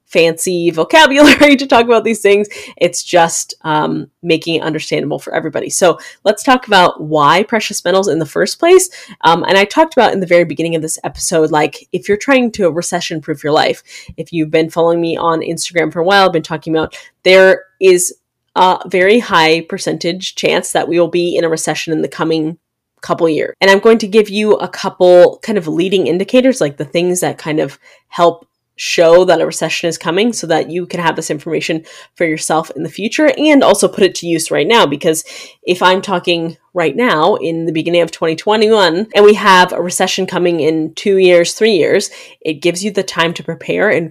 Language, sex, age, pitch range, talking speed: English, female, 20-39, 165-195 Hz, 210 wpm